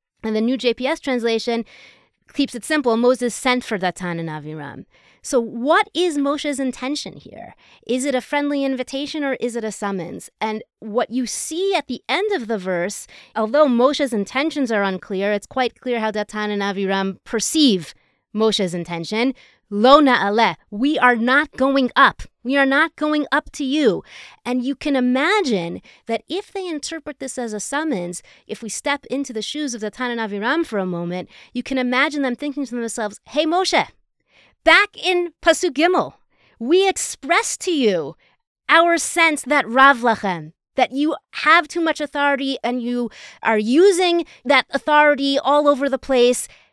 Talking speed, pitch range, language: 170 wpm, 225-300 Hz, English